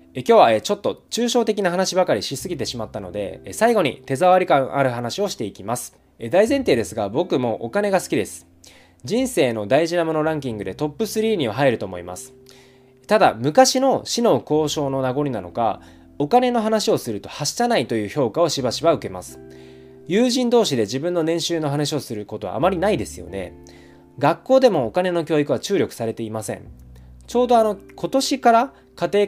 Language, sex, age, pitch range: Japanese, male, 20-39, 110-185 Hz